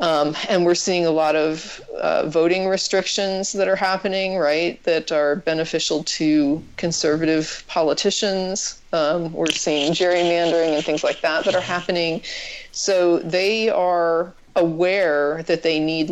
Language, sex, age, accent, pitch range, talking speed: English, female, 40-59, American, 145-175 Hz, 140 wpm